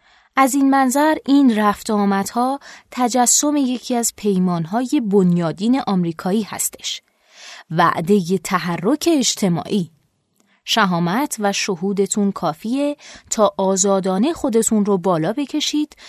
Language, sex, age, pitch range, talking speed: Persian, female, 20-39, 180-235 Hz, 100 wpm